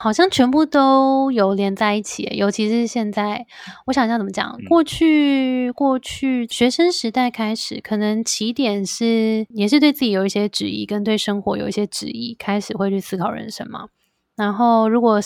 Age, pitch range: 20-39, 200-245 Hz